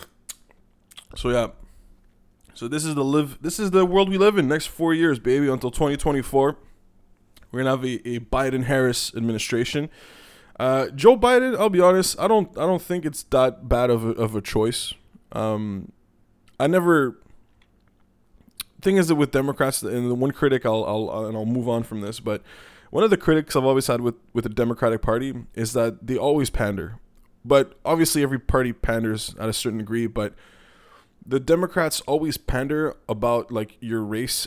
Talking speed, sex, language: 185 wpm, male, English